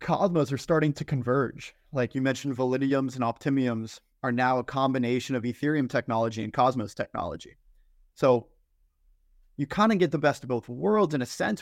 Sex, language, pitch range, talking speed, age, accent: male, English, 125-150 Hz, 175 wpm, 20-39, American